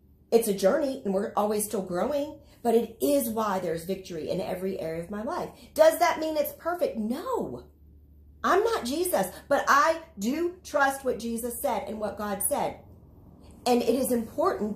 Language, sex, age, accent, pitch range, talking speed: English, female, 40-59, American, 195-255 Hz, 180 wpm